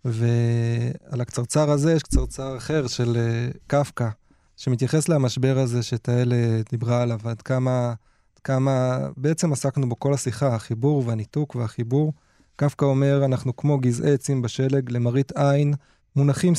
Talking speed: 135 wpm